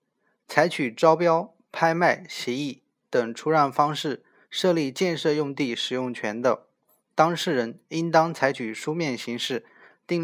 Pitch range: 125-170 Hz